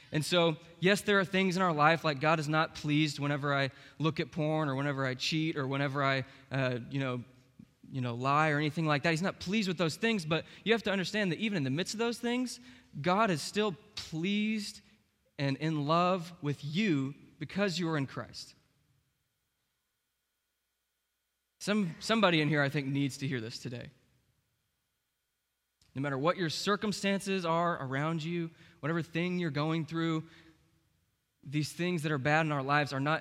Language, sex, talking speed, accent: English, male, 185 wpm, American